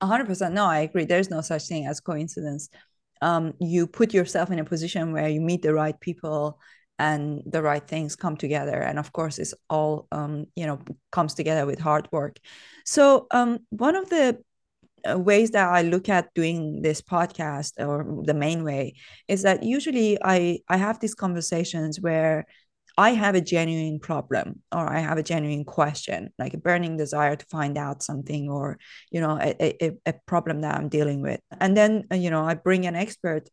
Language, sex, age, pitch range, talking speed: English, female, 30-49, 150-180 Hz, 190 wpm